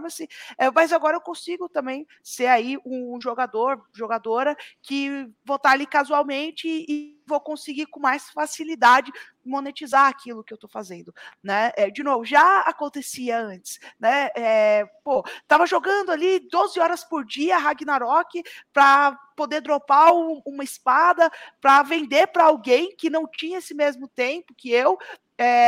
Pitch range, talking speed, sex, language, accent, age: 230-305 Hz, 150 wpm, female, Portuguese, Brazilian, 20-39